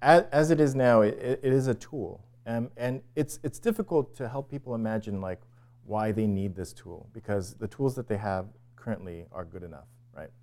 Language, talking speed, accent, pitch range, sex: English, 200 wpm, American, 95-120 Hz, male